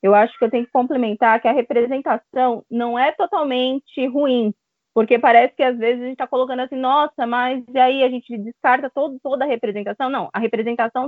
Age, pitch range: 20-39, 225-275 Hz